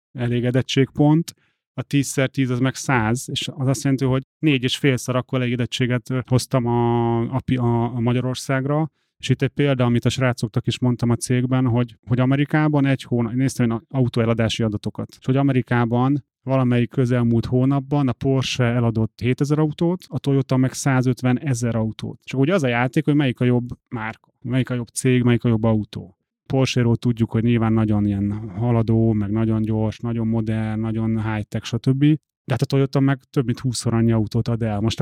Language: Hungarian